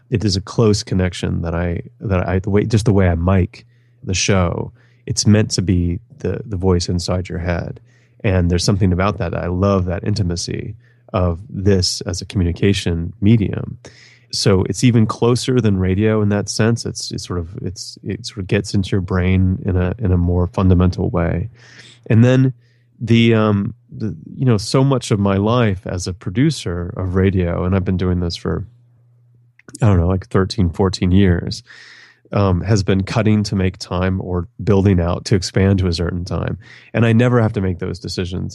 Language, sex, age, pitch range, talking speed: German, male, 30-49, 90-115 Hz, 195 wpm